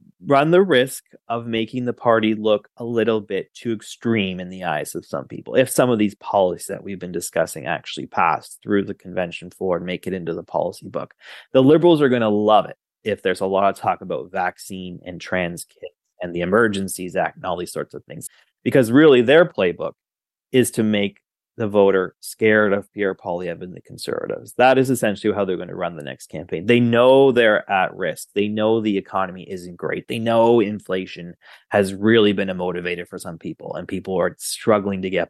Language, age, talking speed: English, 30-49, 210 wpm